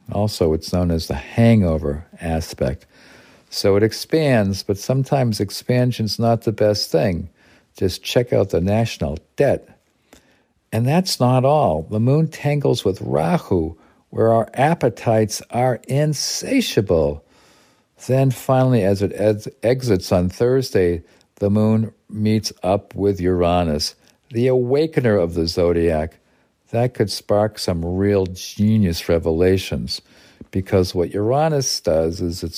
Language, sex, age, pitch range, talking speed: English, male, 50-69, 85-115 Hz, 125 wpm